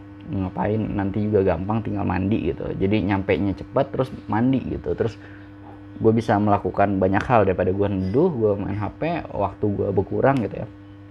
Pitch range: 100-125 Hz